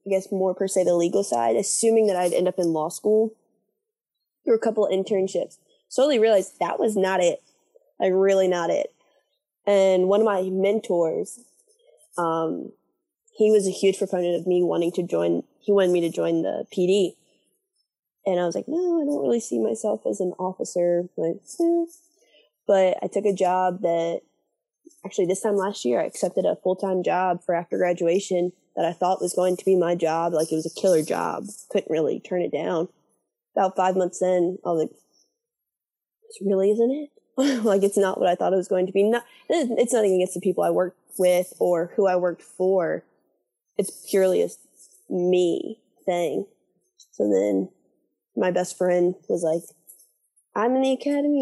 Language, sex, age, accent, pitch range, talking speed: English, female, 20-39, American, 175-220 Hz, 185 wpm